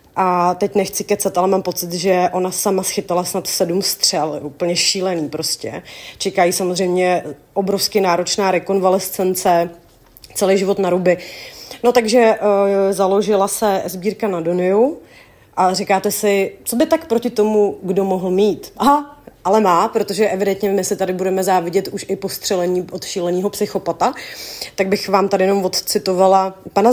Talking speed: 150 wpm